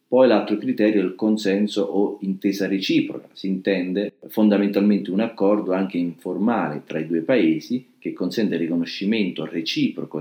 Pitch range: 85-105 Hz